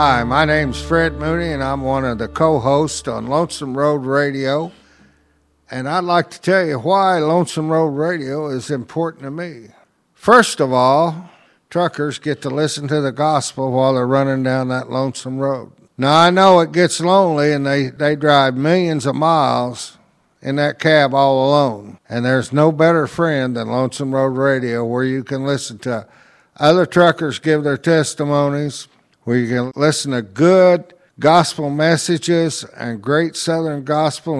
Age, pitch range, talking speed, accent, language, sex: 60-79, 135-165 Hz, 165 wpm, American, English, male